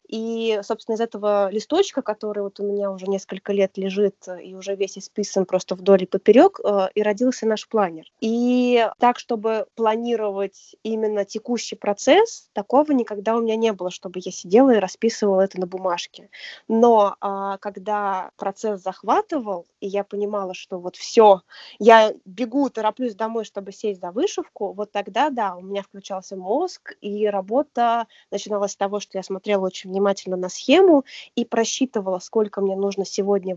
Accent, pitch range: native, 195-240 Hz